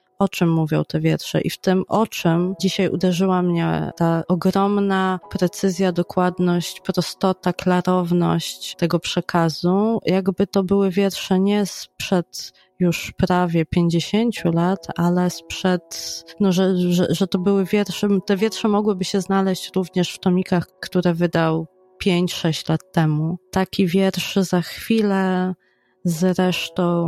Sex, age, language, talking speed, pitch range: female, 20-39, Polish, 125 wpm, 170-190 Hz